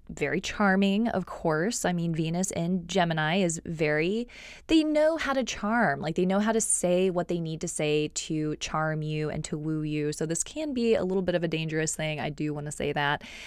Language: English